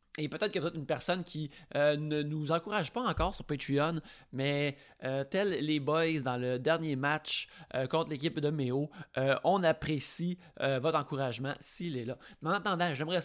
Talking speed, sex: 195 wpm, male